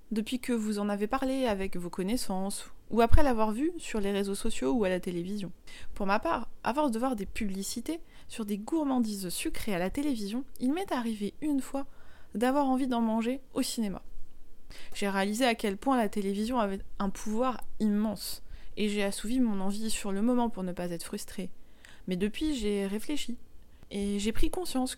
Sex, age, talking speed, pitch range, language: female, 20-39, 190 wpm, 200-255 Hz, French